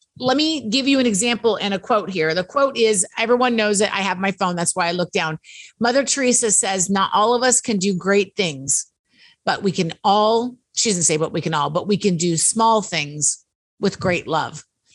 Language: English